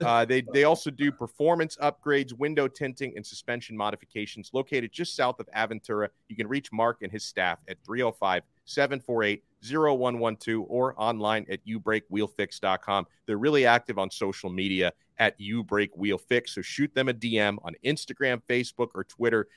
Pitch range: 105-135 Hz